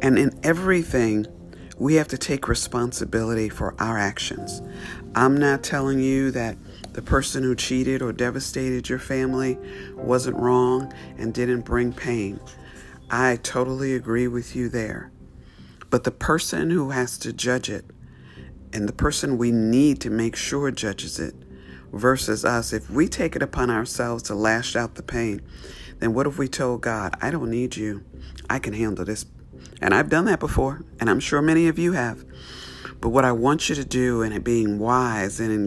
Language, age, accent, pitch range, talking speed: English, 50-69, American, 95-125 Hz, 180 wpm